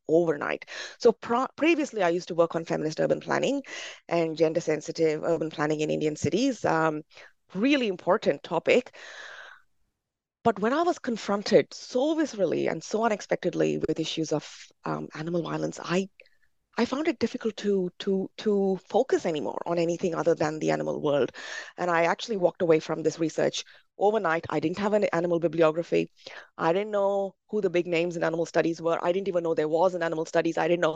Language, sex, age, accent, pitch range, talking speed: English, female, 30-49, Indian, 160-210 Hz, 185 wpm